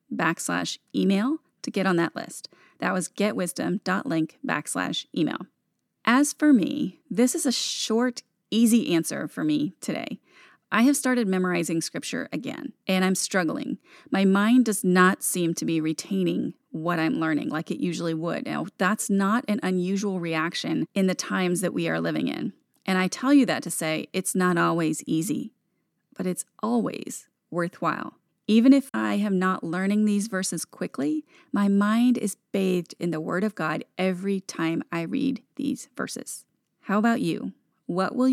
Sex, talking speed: female, 165 wpm